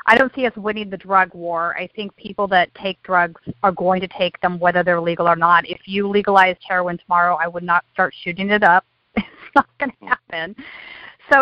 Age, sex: 40-59, female